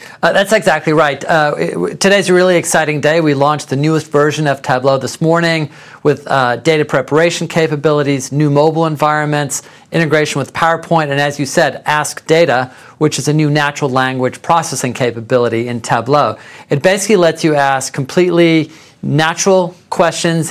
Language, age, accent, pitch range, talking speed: English, 40-59, American, 135-165 Hz, 160 wpm